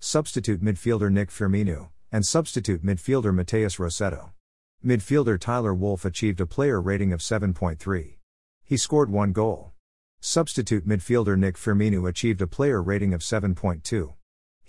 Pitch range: 90-115 Hz